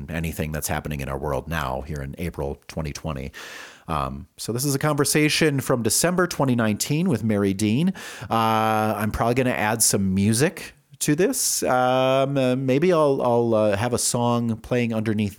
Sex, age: male, 40-59